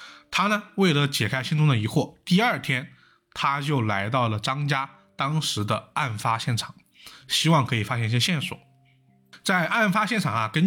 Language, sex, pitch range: Chinese, male, 110-160 Hz